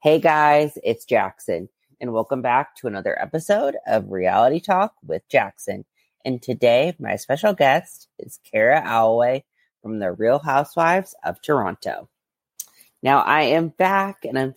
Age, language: 30-49, English